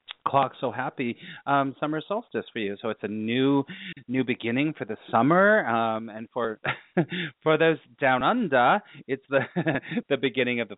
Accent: American